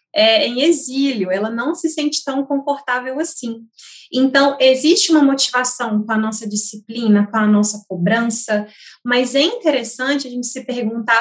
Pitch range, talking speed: 220-275 Hz, 155 wpm